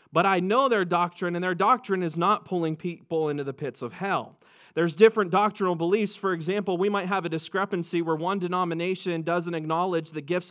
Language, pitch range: English, 185-225 Hz